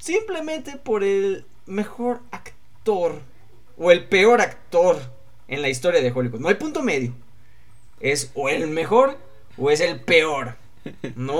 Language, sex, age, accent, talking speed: Spanish, male, 20-39, Mexican, 140 wpm